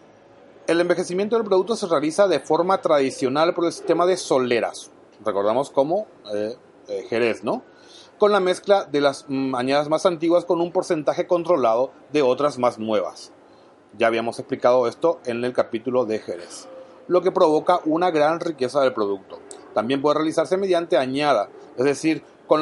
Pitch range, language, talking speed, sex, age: 125-170 Hz, Spanish, 165 wpm, male, 30-49